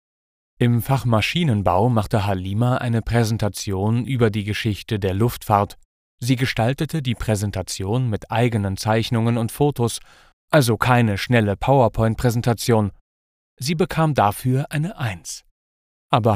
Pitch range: 100-130 Hz